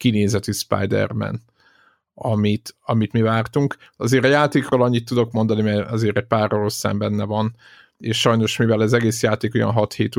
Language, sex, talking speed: Hungarian, male, 160 wpm